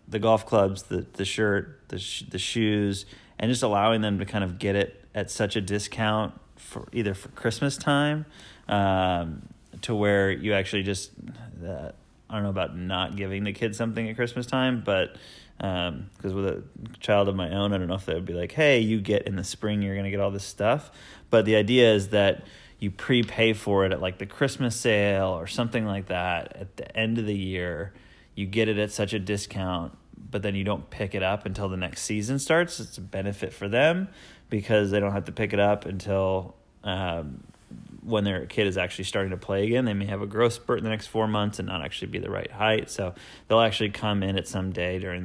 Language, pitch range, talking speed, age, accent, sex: English, 95-110 Hz, 225 wpm, 30-49, American, male